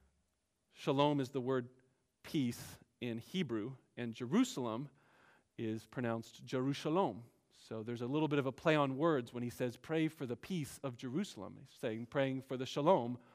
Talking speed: 165 wpm